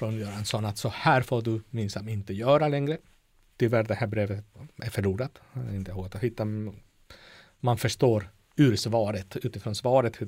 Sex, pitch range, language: male, 100-125 Hz, Swedish